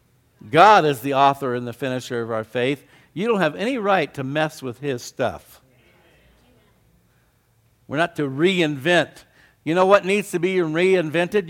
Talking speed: 160 wpm